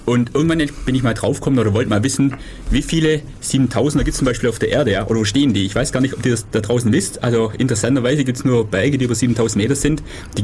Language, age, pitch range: German, 30-49, 110-135 Hz